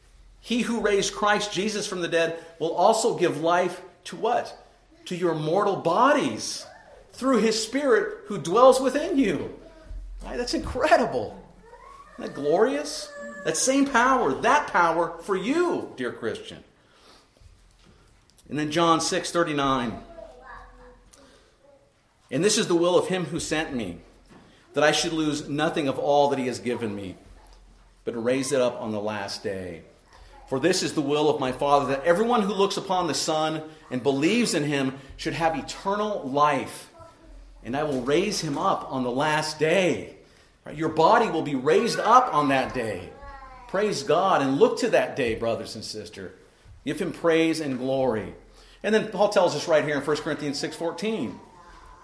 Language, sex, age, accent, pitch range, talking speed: English, male, 50-69, American, 140-210 Hz, 165 wpm